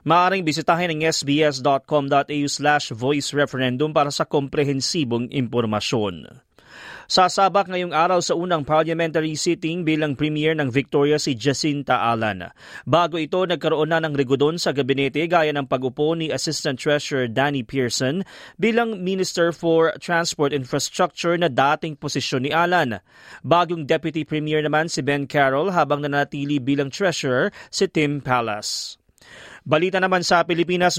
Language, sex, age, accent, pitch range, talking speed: Filipino, male, 20-39, native, 145-170 Hz, 135 wpm